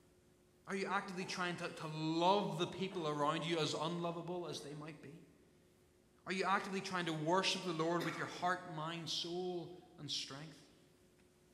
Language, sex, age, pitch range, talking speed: English, male, 30-49, 135-175 Hz, 165 wpm